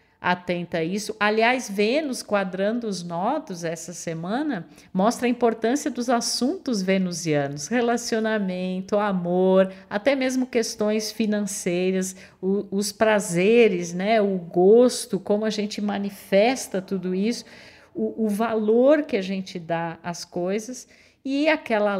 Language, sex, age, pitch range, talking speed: Portuguese, female, 50-69, 180-230 Hz, 115 wpm